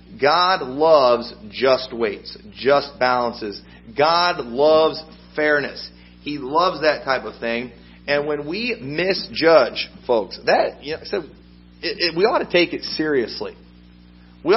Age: 40-59